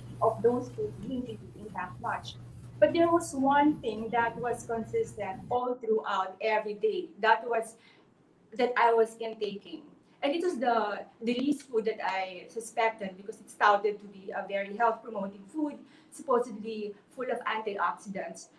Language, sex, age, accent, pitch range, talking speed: English, female, 30-49, Filipino, 200-245 Hz, 160 wpm